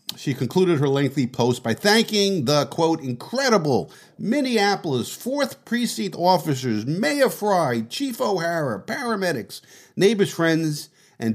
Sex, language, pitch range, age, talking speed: male, English, 120-180 Hz, 50-69, 115 wpm